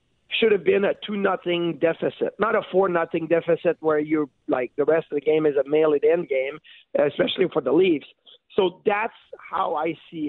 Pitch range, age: 155-190 Hz, 40-59